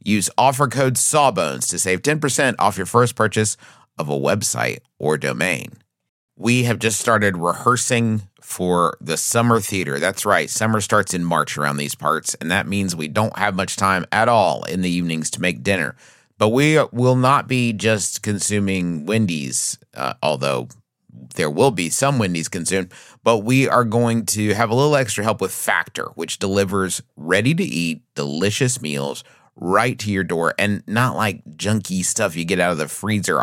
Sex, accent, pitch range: male, American, 95-125 Hz